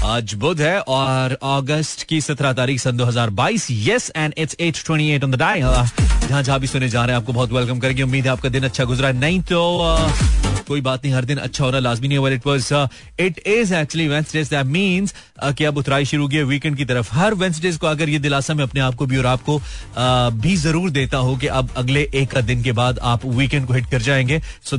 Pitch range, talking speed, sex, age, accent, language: 125-160 Hz, 145 wpm, male, 30-49, native, Hindi